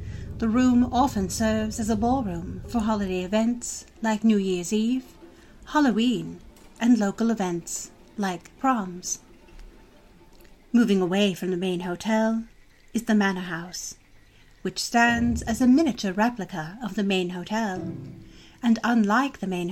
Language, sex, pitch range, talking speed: English, female, 180-240 Hz, 135 wpm